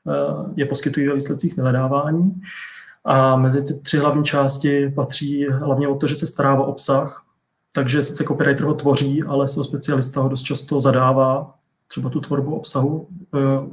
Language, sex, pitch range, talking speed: Czech, male, 130-150 Hz, 165 wpm